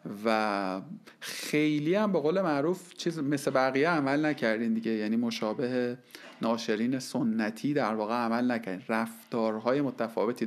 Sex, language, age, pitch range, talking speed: male, Persian, 40-59, 115-150 Hz, 125 wpm